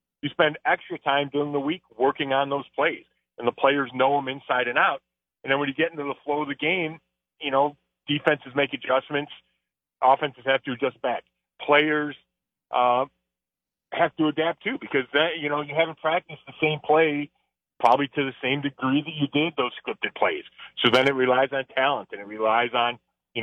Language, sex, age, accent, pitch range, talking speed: English, male, 30-49, American, 125-150 Hz, 195 wpm